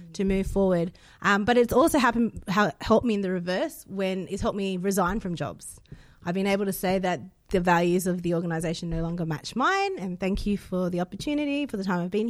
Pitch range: 165-195 Hz